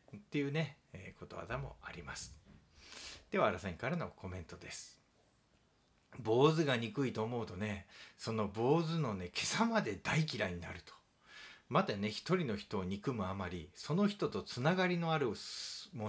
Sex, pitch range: male, 95-155 Hz